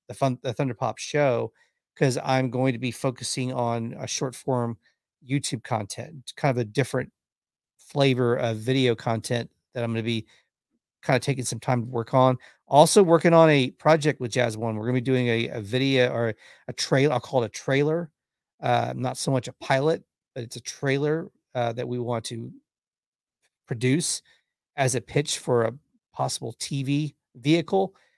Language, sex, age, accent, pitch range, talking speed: English, male, 40-59, American, 120-140 Hz, 185 wpm